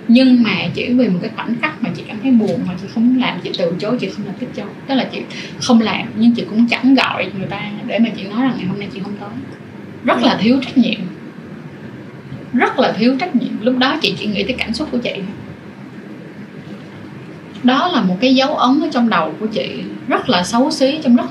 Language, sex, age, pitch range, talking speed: Vietnamese, female, 10-29, 195-250 Hz, 240 wpm